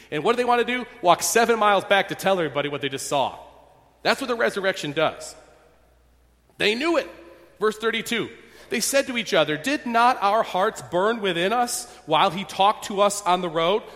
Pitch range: 170-235 Hz